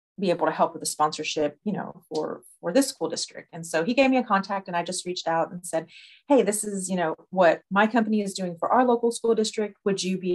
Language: English